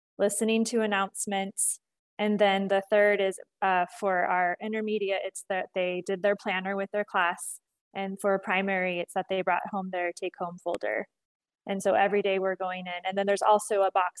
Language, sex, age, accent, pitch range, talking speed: English, female, 20-39, American, 190-225 Hz, 195 wpm